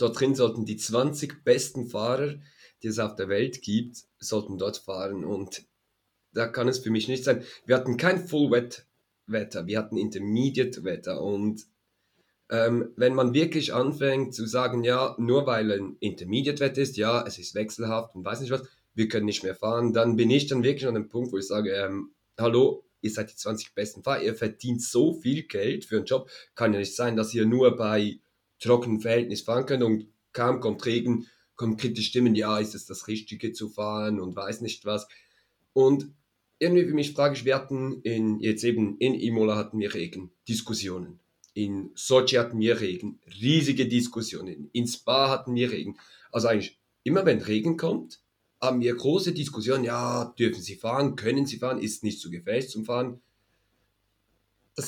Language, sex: German, male